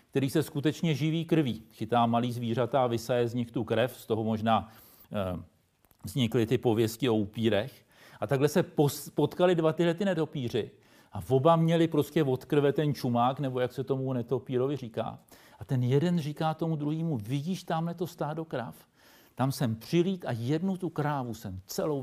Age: 50-69